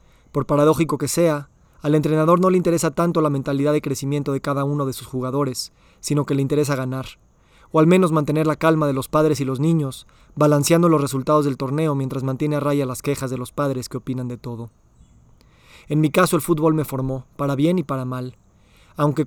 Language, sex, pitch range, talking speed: Spanish, male, 130-155 Hz, 210 wpm